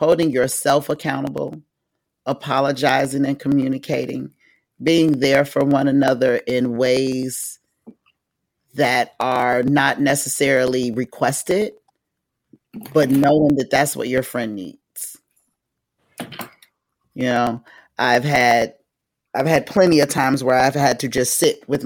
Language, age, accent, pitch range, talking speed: English, 40-59, American, 125-145 Hz, 115 wpm